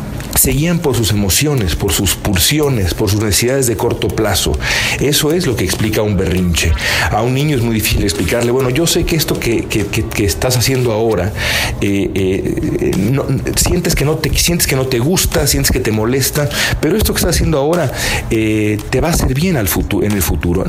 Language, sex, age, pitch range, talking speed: Spanish, male, 50-69, 100-130 Hz, 190 wpm